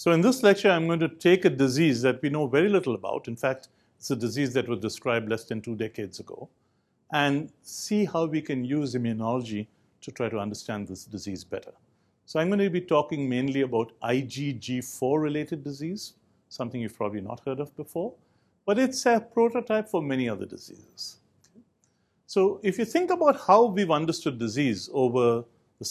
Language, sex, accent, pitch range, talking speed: English, male, Indian, 115-165 Hz, 185 wpm